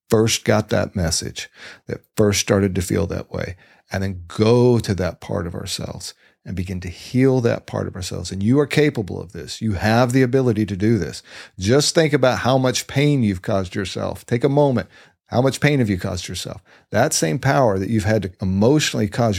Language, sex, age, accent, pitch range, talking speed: English, male, 50-69, American, 100-120 Hz, 210 wpm